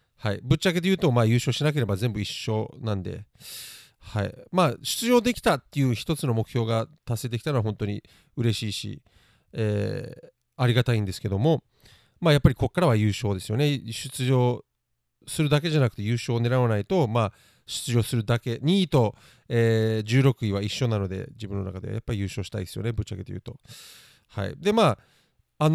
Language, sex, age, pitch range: Japanese, male, 40-59, 105-140 Hz